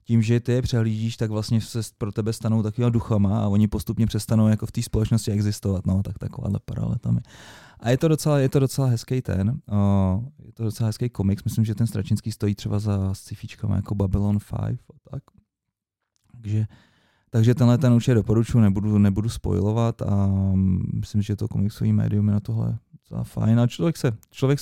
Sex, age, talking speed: male, 30-49, 195 wpm